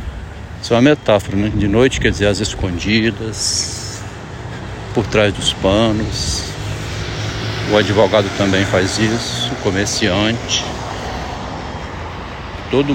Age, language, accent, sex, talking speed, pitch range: 70-89, Portuguese, Brazilian, male, 100 wpm, 95-115 Hz